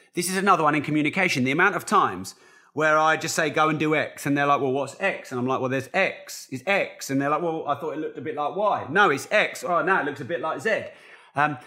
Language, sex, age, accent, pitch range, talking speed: English, male, 30-49, British, 125-165 Hz, 290 wpm